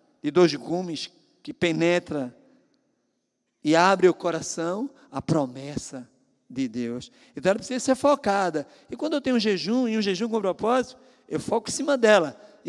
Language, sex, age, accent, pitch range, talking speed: Portuguese, male, 50-69, Brazilian, 200-280 Hz, 165 wpm